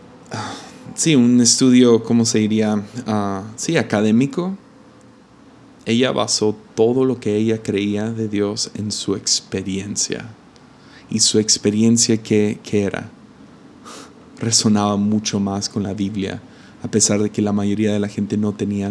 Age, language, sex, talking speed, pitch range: 20-39, Spanish, male, 135 wpm, 105-115 Hz